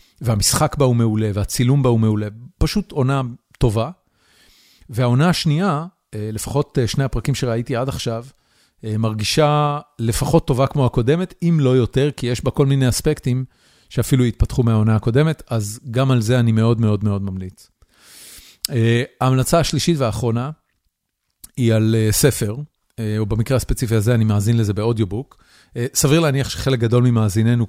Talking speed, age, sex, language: 140 wpm, 40-59, male, Hebrew